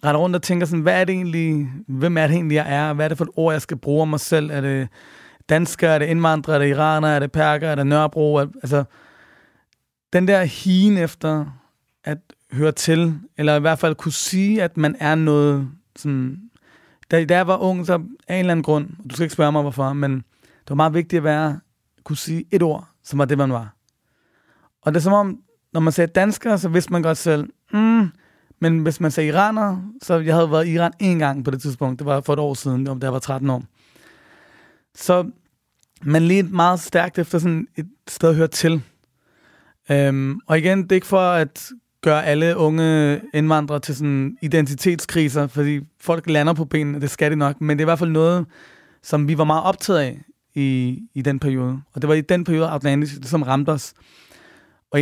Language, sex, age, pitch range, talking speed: Danish, male, 30-49, 145-170 Hz, 220 wpm